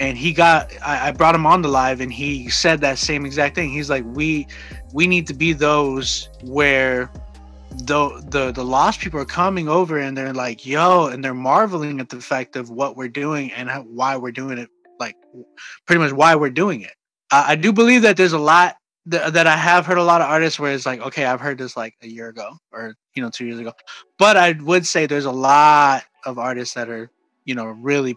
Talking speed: 230 wpm